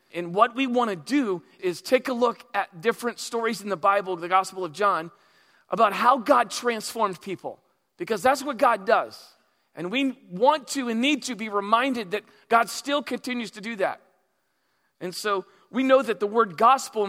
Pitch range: 195-240 Hz